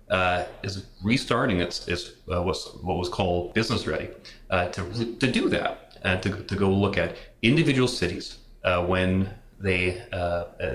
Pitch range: 90-115 Hz